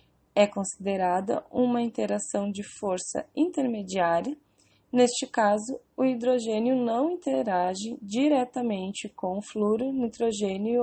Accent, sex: Brazilian, female